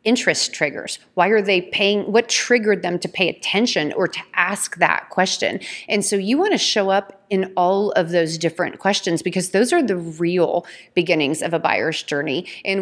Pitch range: 170-220 Hz